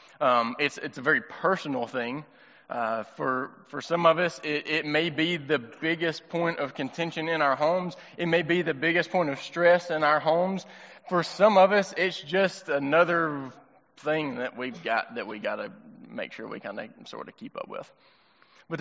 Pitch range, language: 145-175 Hz, English